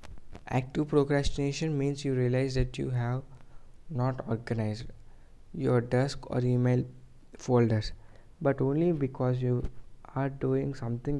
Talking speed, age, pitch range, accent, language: 120 wpm, 20-39, 115-135 Hz, Indian, English